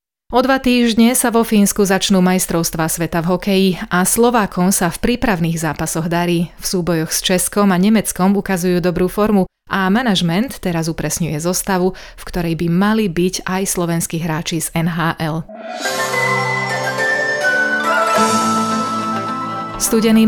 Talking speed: 125 wpm